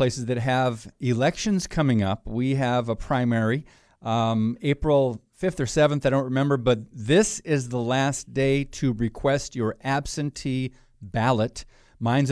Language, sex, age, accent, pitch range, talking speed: English, male, 40-59, American, 110-140 Hz, 145 wpm